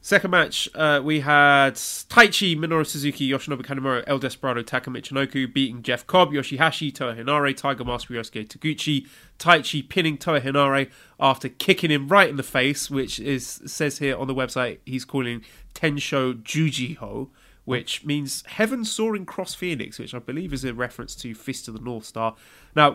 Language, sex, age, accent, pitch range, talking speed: English, male, 30-49, British, 125-165 Hz, 160 wpm